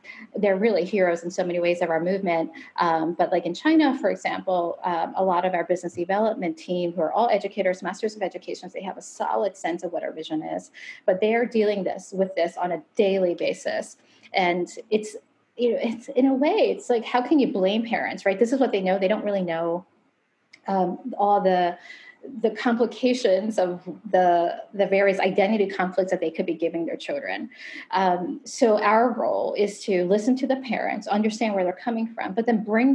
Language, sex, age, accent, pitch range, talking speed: English, female, 30-49, American, 180-235 Hz, 210 wpm